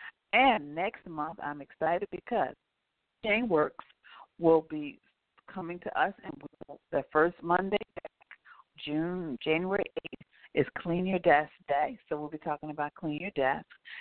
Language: English